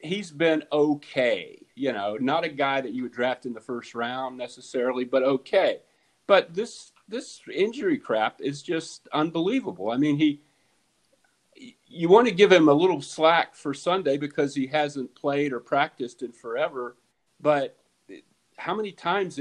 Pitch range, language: 130-185 Hz, English